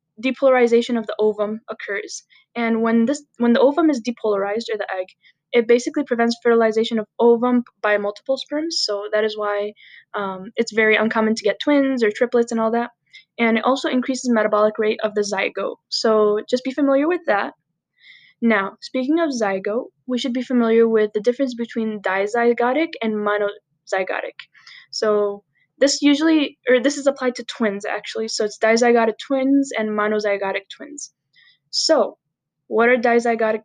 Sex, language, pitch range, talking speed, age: female, English, 215-260 Hz, 165 wpm, 10-29